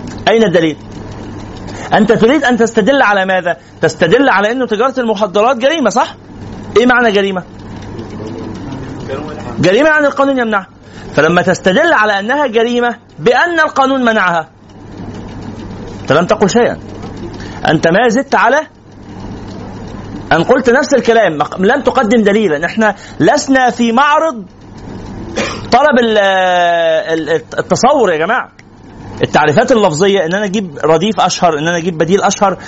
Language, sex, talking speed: Arabic, male, 120 wpm